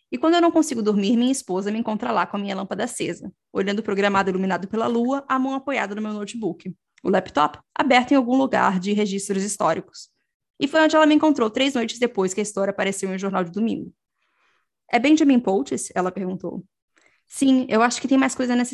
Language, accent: Portuguese, Brazilian